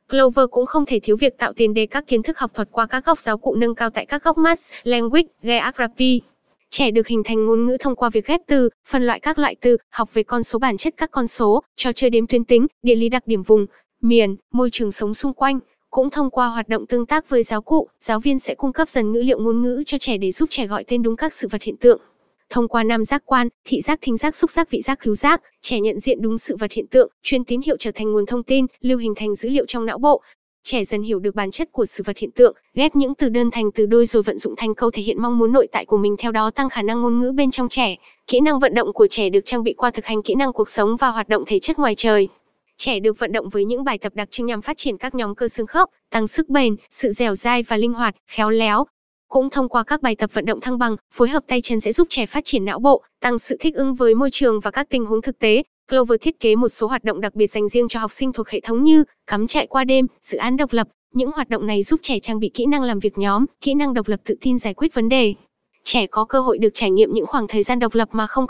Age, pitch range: 10-29, 220-265 Hz